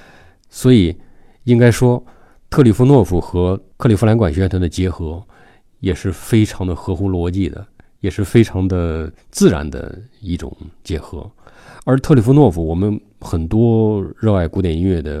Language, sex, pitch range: Chinese, male, 85-120 Hz